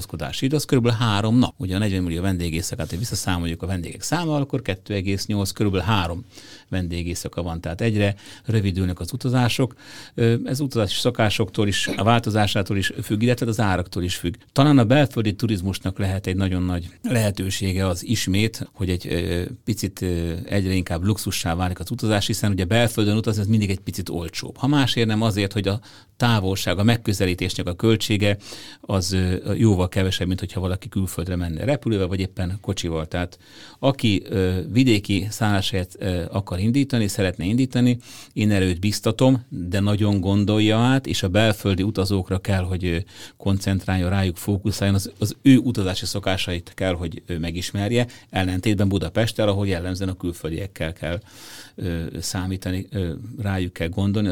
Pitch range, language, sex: 95-110 Hz, Hungarian, male